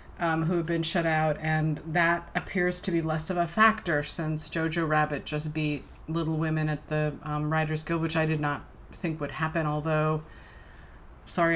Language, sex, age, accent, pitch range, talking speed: English, female, 30-49, American, 150-175 Hz, 185 wpm